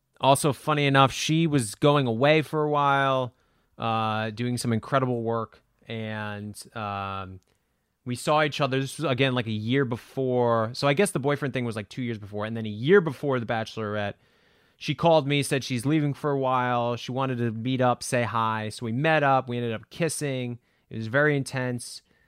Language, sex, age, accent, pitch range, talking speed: English, male, 30-49, American, 115-140 Hz, 200 wpm